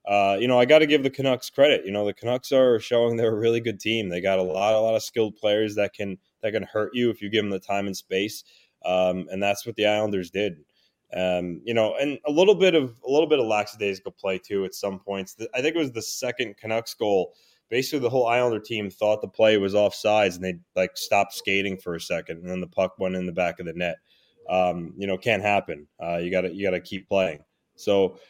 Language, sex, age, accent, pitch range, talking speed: English, male, 20-39, American, 95-120 Hz, 260 wpm